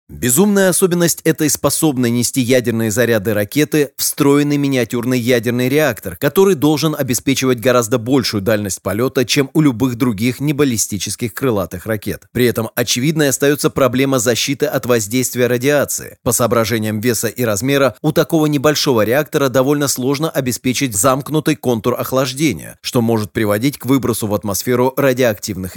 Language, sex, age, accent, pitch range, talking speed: Russian, male, 30-49, native, 115-140 Hz, 135 wpm